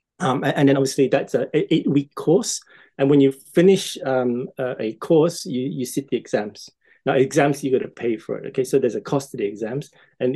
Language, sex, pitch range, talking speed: English, male, 130-150 Hz, 220 wpm